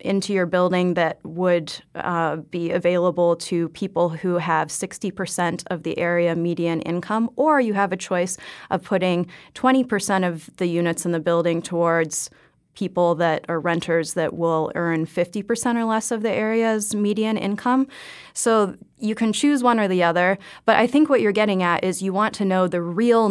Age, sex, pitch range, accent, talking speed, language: 30-49, female, 175-210 Hz, American, 180 wpm, English